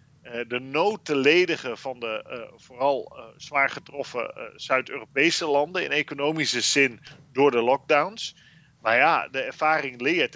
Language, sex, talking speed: Dutch, male, 145 wpm